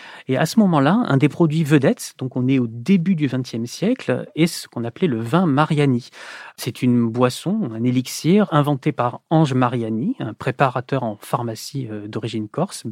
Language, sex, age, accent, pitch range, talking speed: French, male, 40-59, French, 125-165 Hz, 175 wpm